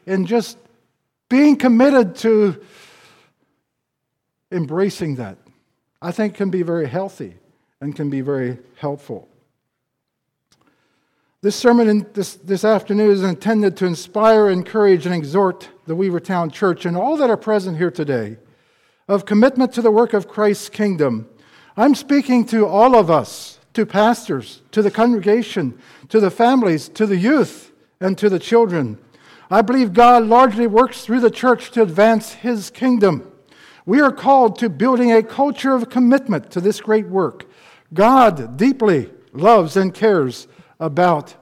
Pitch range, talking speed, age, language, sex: 165-225 Hz, 145 wpm, 60-79, English, male